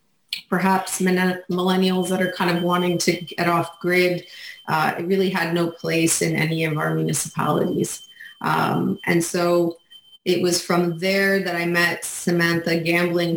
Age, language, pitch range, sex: 30-49, English, 170-185 Hz, female